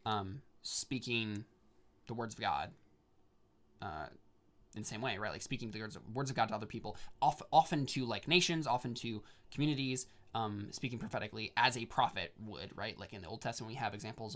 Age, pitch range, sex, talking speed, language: 20-39, 105-135 Hz, male, 185 wpm, English